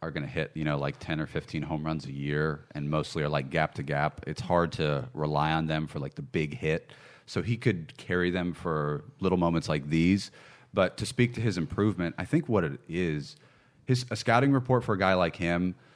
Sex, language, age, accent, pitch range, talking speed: male, English, 30-49, American, 80-95 Hz, 235 wpm